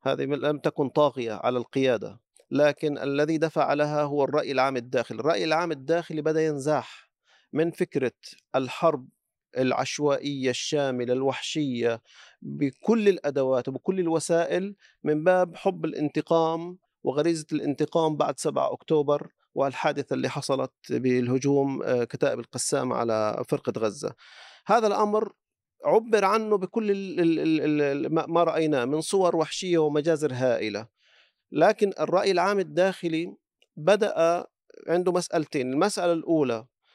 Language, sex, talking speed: Arabic, male, 110 wpm